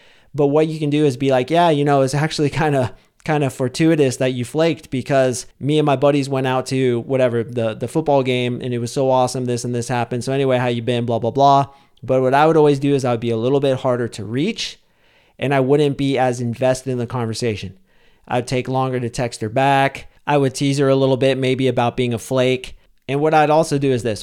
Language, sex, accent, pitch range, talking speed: English, male, American, 125-140 Hz, 250 wpm